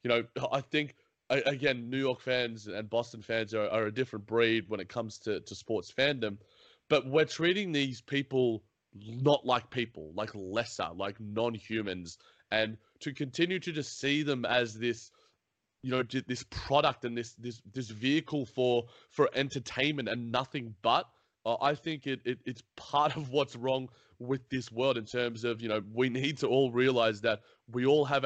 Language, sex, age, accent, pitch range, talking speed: English, male, 20-39, Australian, 110-135 Hz, 185 wpm